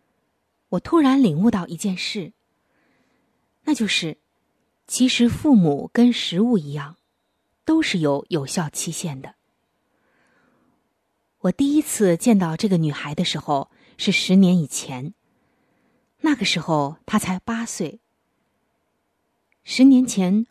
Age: 20-39